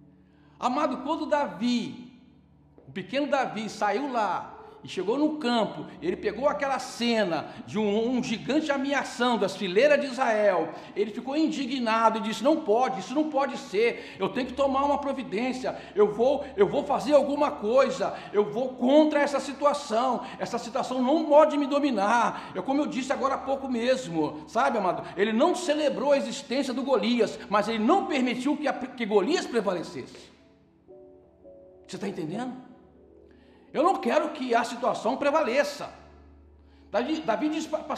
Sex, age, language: male, 60-79, Portuguese